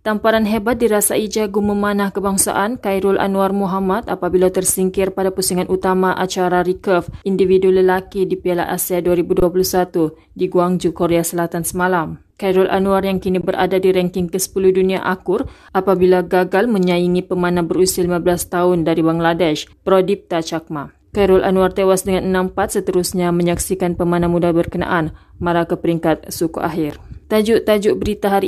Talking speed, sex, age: 140 wpm, female, 30-49